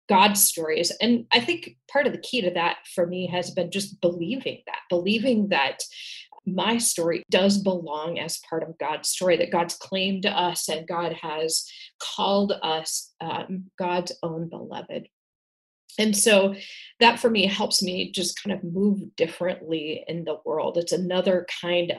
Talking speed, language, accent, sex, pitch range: 165 wpm, English, American, female, 165-195 Hz